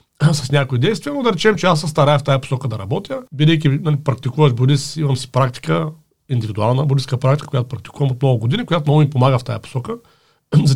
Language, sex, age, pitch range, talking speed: Bulgarian, male, 40-59, 130-155 Hz, 200 wpm